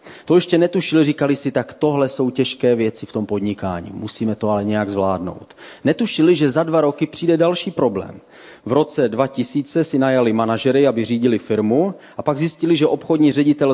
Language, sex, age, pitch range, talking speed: Czech, male, 30-49, 115-145 Hz, 180 wpm